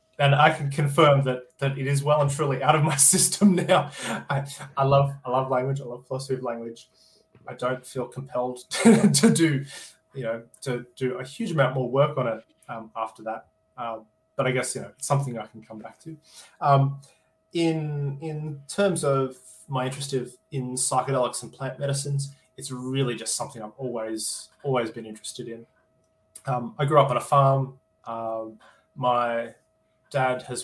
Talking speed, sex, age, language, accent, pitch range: 185 wpm, male, 20-39, English, Australian, 120-140 Hz